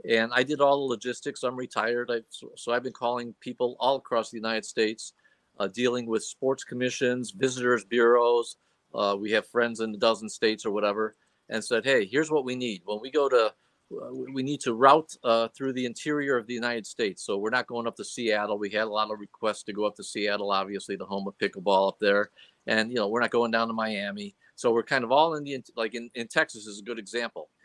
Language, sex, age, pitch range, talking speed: English, male, 50-69, 110-125 Hz, 235 wpm